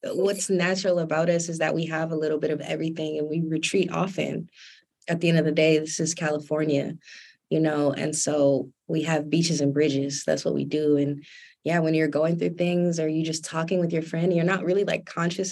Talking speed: 225 wpm